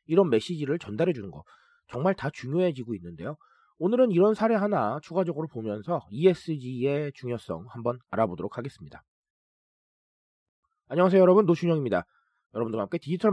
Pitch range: 130-200 Hz